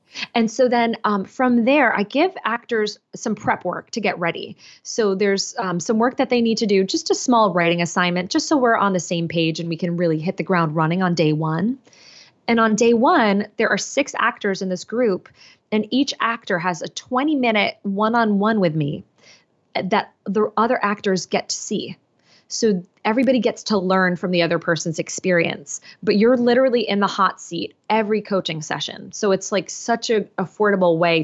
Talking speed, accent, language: 200 wpm, American, English